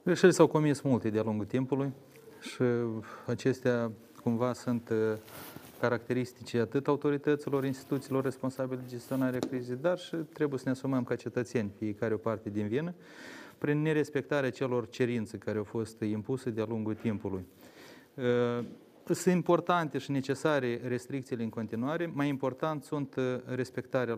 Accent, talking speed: native, 135 wpm